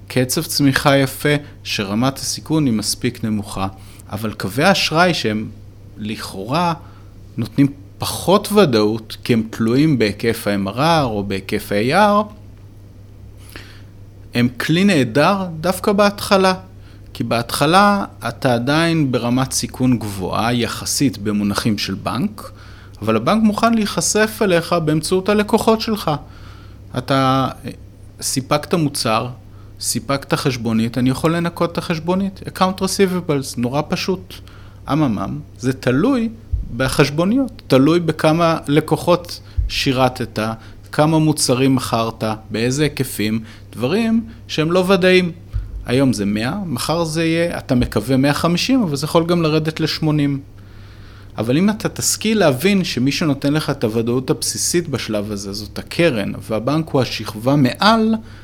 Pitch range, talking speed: 105-160 Hz, 115 wpm